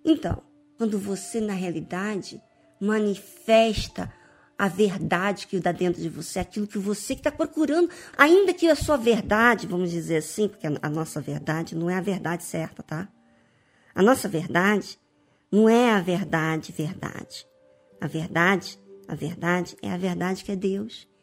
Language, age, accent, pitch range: Portuguese, 50-69, Brazilian, 175-235 Hz